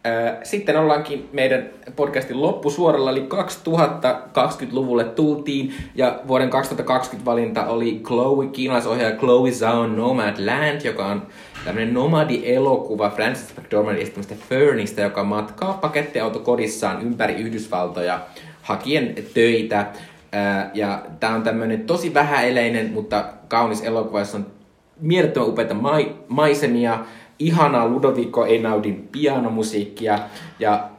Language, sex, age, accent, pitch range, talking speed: Finnish, male, 20-39, native, 105-130 Hz, 105 wpm